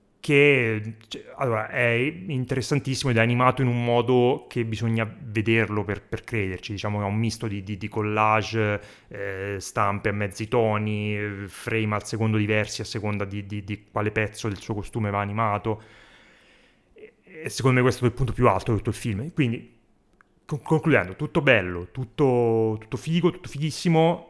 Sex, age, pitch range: male, 30-49, 105-130 Hz